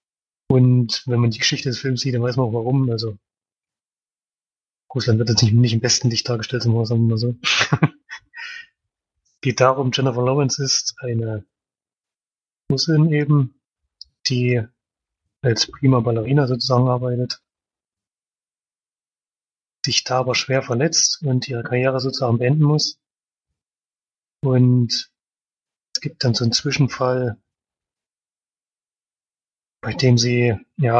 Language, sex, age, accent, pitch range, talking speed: German, male, 30-49, German, 115-130 Hz, 120 wpm